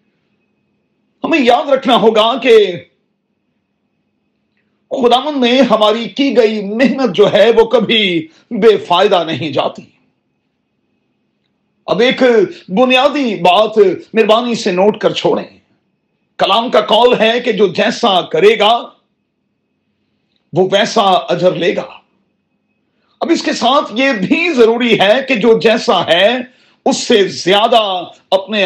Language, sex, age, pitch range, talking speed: Urdu, male, 40-59, 205-260 Hz, 120 wpm